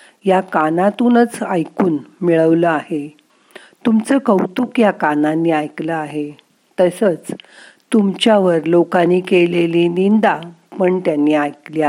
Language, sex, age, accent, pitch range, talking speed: Marathi, female, 50-69, native, 160-215 Hz, 95 wpm